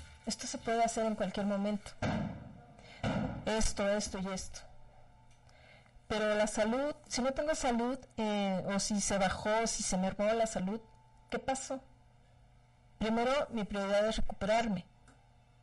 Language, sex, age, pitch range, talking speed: Spanish, female, 40-59, 165-235 Hz, 140 wpm